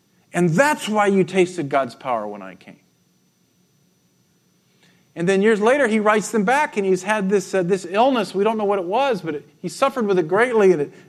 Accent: American